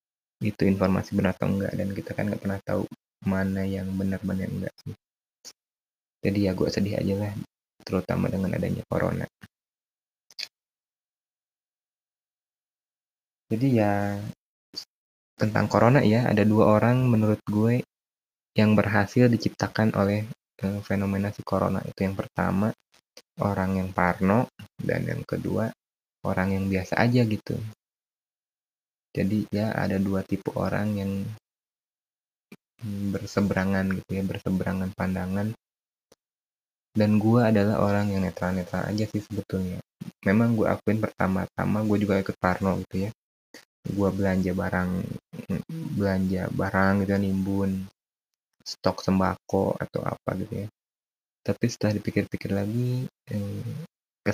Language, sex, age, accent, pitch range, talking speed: Indonesian, male, 20-39, native, 95-105 Hz, 120 wpm